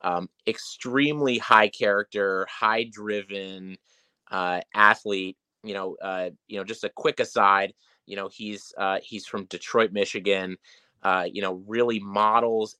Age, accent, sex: 30-49, American, male